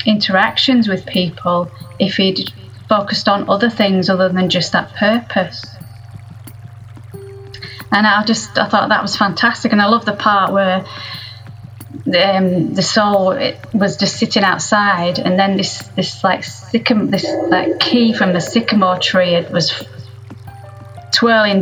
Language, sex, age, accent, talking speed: English, female, 30-49, British, 145 wpm